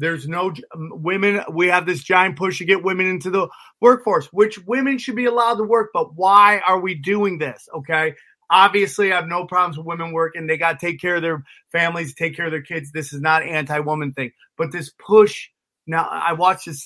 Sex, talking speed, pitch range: male, 220 wpm, 155-195 Hz